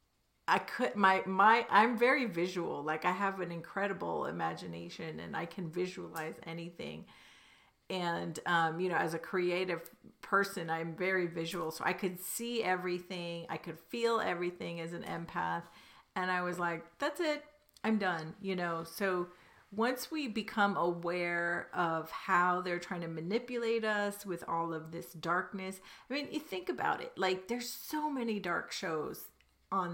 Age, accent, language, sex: 40-59, American, English, female